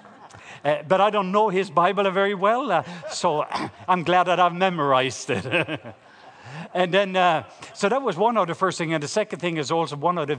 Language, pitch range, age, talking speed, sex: English, 135-170 Hz, 50-69, 215 wpm, male